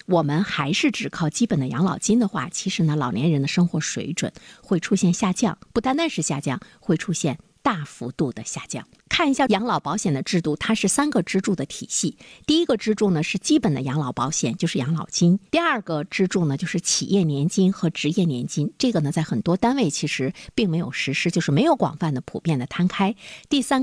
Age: 50-69